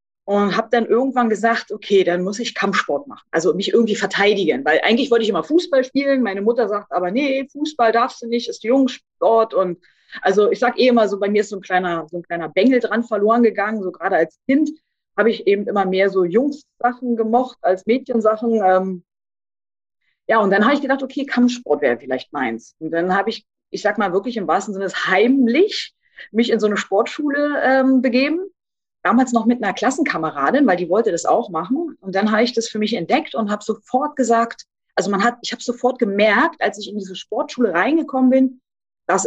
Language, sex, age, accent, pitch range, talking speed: German, female, 30-49, German, 195-255 Hz, 205 wpm